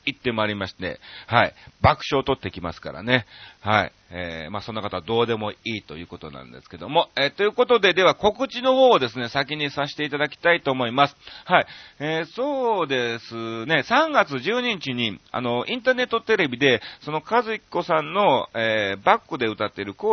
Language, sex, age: Japanese, male, 40-59